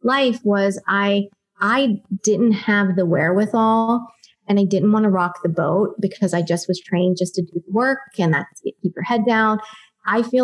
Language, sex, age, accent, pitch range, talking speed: English, female, 20-39, American, 185-210 Hz, 200 wpm